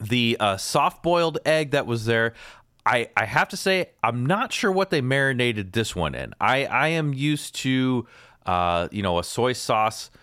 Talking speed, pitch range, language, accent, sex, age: 190 wpm, 100-140 Hz, English, American, male, 30-49